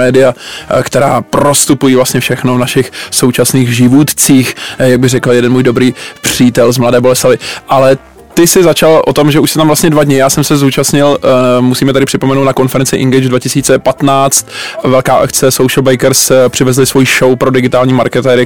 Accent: native